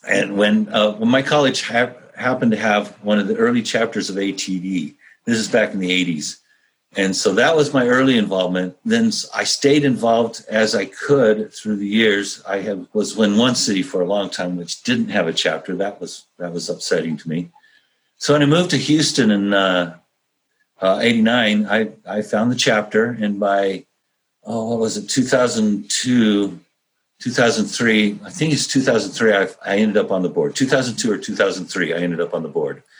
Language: English